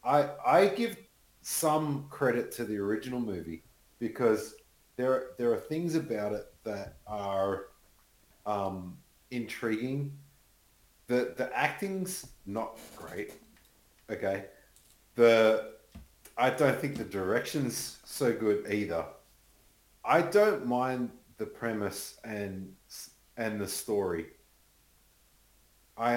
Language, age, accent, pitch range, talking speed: English, 40-59, Australian, 95-125 Hz, 105 wpm